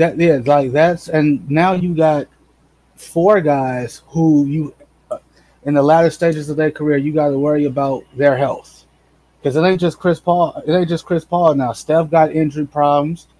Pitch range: 145-170 Hz